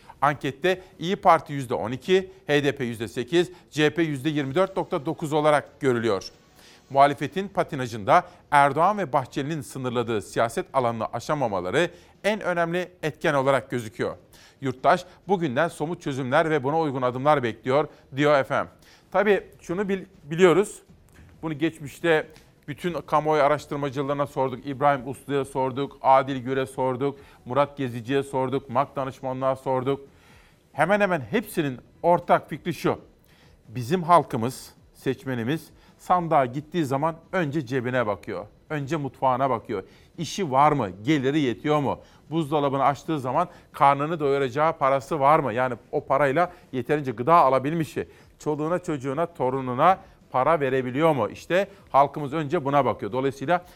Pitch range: 130-165 Hz